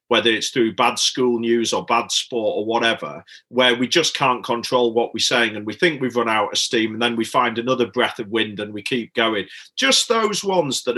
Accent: British